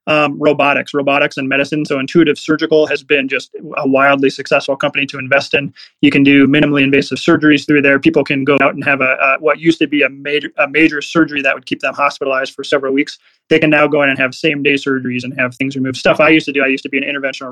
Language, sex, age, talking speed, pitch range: English, male, 20-39, 255 wpm, 135-150 Hz